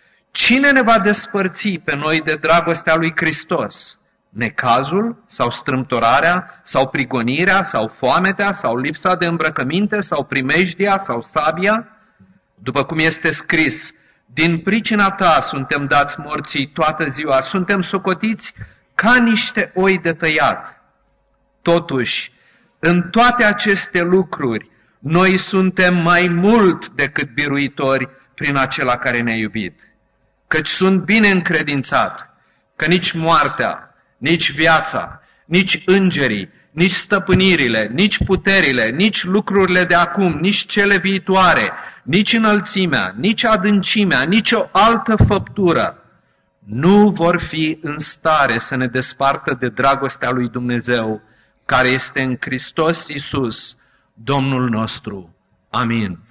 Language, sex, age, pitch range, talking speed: Romanian, male, 40-59, 135-195 Hz, 115 wpm